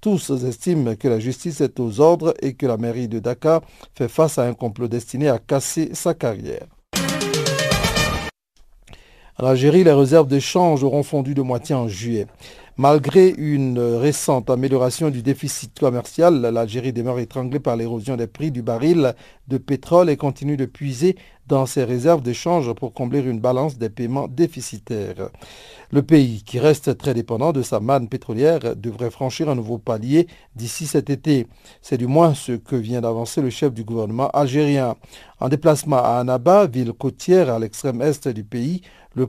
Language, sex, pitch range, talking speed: French, male, 120-150 Hz, 165 wpm